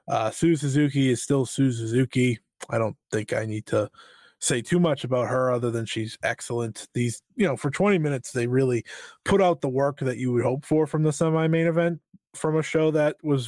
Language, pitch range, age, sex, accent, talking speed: English, 125-175 Hz, 20-39, male, American, 215 wpm